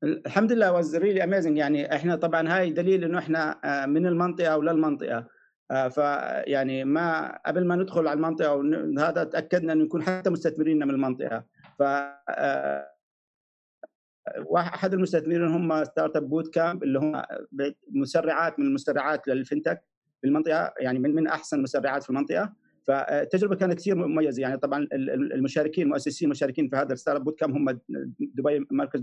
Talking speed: 145 wpm